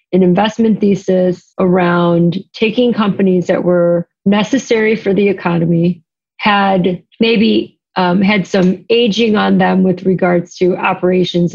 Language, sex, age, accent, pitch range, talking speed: English, female, 30-49, American, 170-195 Hz, 125 wpm